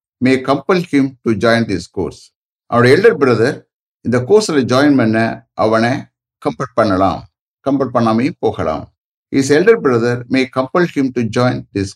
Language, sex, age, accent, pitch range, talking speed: English, male, 60-79, Indian, 115-145 Hz, 125 wpm